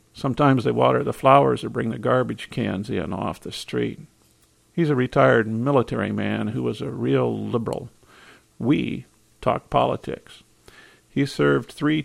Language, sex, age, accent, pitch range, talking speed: English, male, 50-69, American, 110-130 Hz, 150 wpm